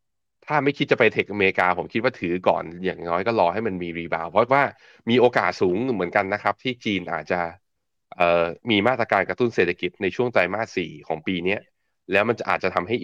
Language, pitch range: Thai, 90-115 Hz